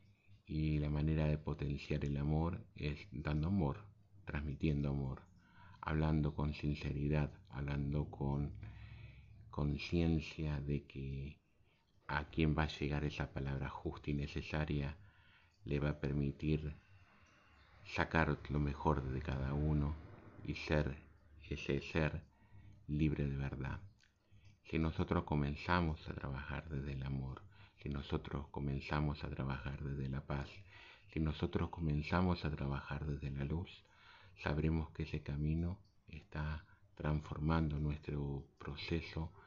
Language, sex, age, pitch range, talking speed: Spanish, male, 50-69, 70-90 Hz, 120 wpm